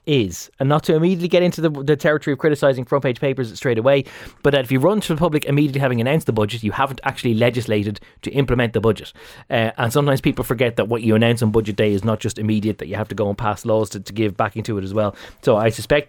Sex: male